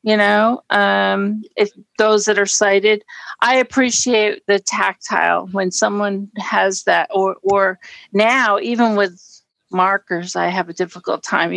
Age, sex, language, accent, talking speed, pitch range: 50-69, female, English, American, 140 wpm, 195-230 Hz